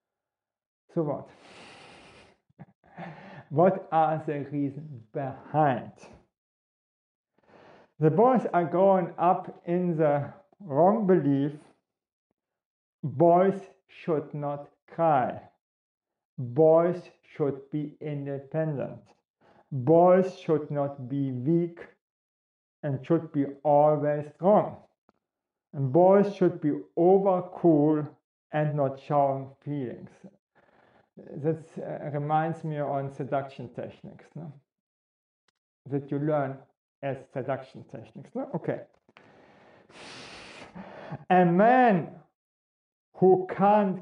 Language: English